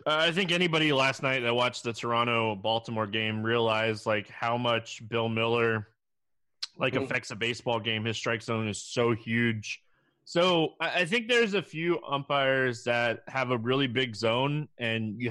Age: 20-39